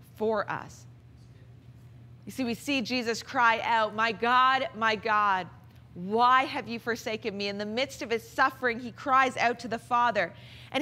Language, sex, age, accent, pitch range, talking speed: English, female, 30-49, American, 210-290 Hz, 170 wpm